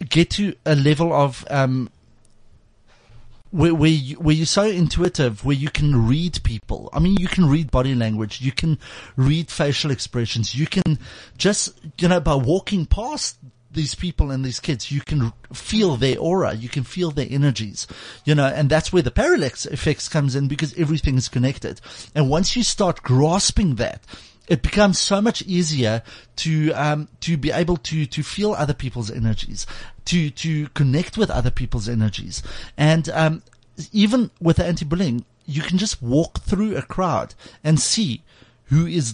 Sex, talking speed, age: male, 175 wpm, 30-49